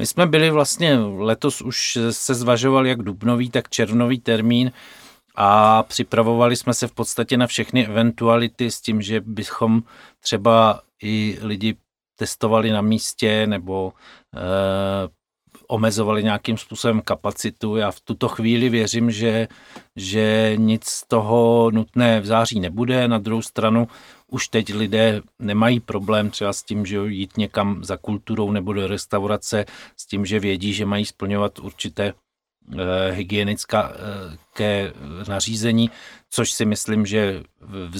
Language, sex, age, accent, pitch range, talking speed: Czech, male, 40-59, native, 100-115 Hz, 135 wpm